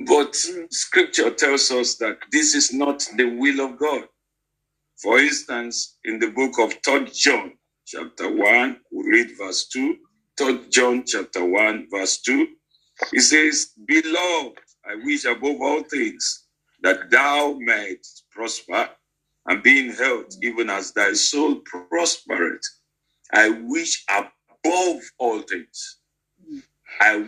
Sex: male